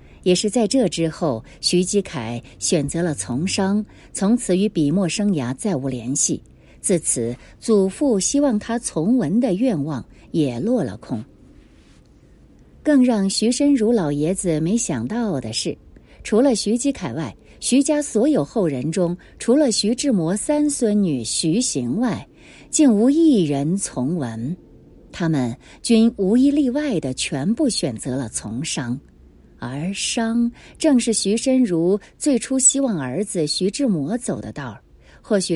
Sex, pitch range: female, 150-235 Hz